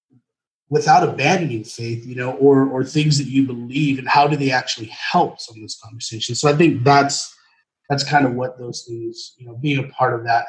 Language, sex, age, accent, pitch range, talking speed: English, male, 30-49, American, 120-160 Hz, 215 wpm